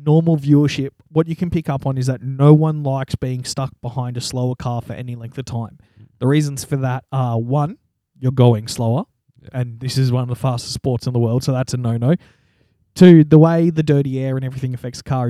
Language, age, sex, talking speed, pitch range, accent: English, 20-39, male, 230 wpm, 125-150 Hz, Australian